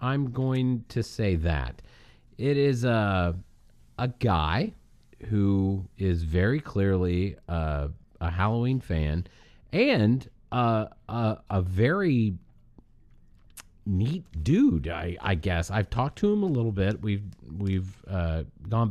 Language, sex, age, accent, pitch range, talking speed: English, male, 40-59, American, 85-115 Hz, 125 wpm